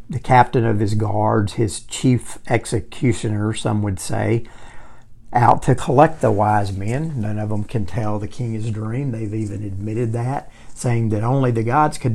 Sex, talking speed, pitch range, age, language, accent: male, 180 wpm, 110-125 Hz, 50-69, English, American